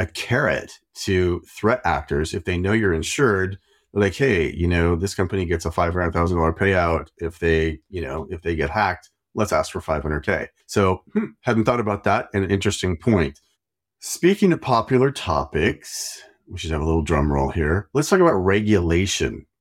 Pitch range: 80-105 Hz